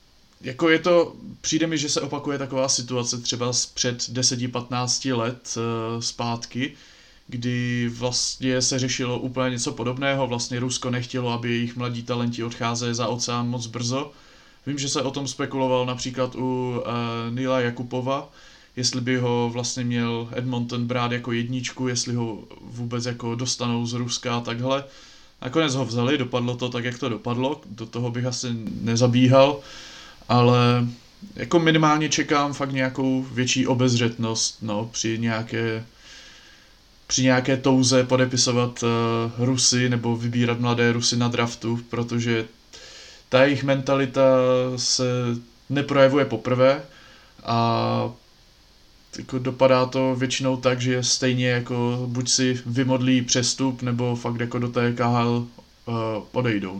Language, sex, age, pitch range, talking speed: Slovak, male, 30-49, 120-130 Hz, 130 wpm